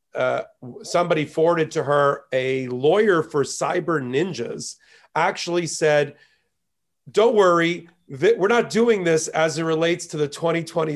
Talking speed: 130 wpm